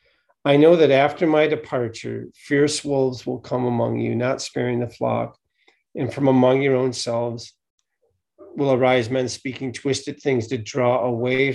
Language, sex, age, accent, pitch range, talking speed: English, male, 40-59, American, 120-140 Hz, 160 wpm